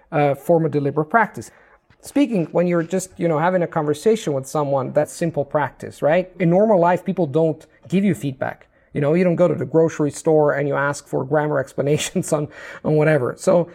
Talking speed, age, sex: 205 wpm, 40-59, male